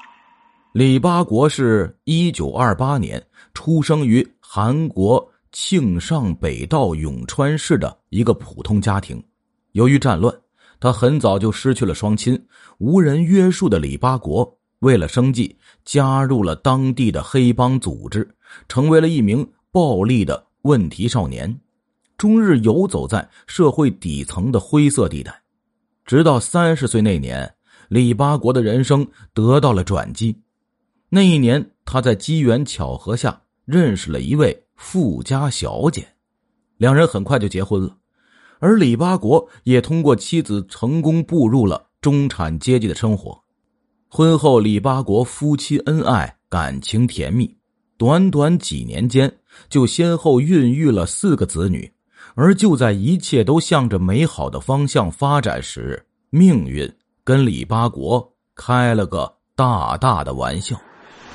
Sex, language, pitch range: male, Chinese, 105-155 Hz